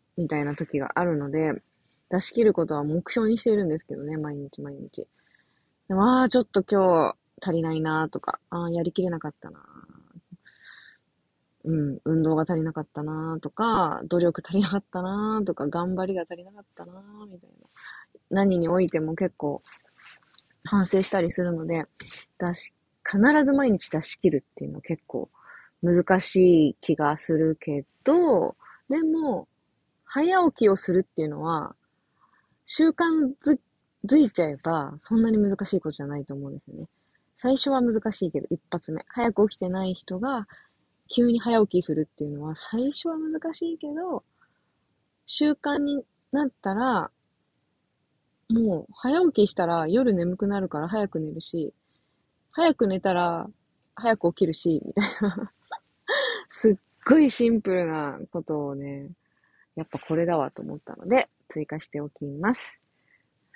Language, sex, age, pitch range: Japanese, female, 20-39, 160-230 Hz